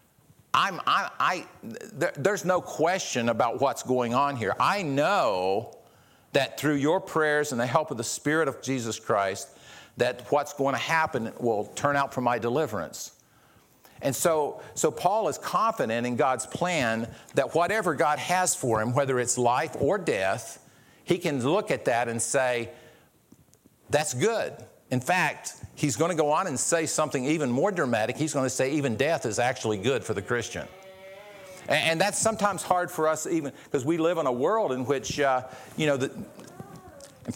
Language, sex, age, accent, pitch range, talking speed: English, male, 50-69, American, 120-155 Hz, 170 wpm